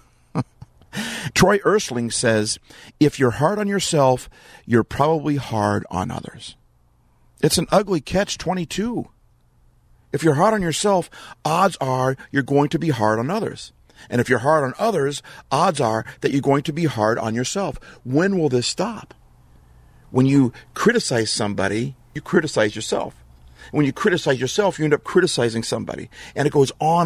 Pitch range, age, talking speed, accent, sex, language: 120-170 Hz, 50-69, 160 wpm, American, male, English